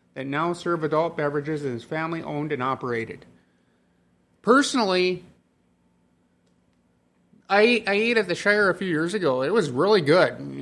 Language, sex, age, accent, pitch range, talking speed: English, male, 30-49, American, 125-175 Hz, 140 wpm